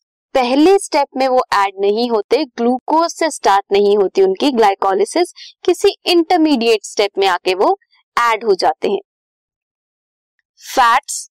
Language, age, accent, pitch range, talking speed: Hindi, 20-39, native, 225-330 Hz, 135 wpm